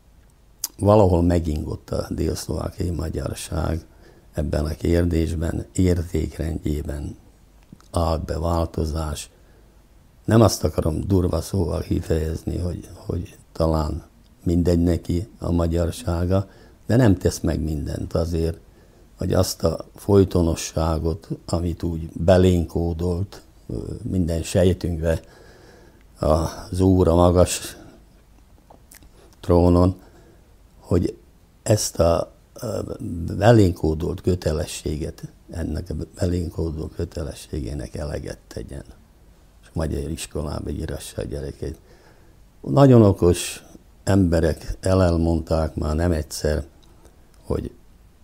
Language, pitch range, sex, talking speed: Hungarian, 80-95 Hz, male, 85 wpm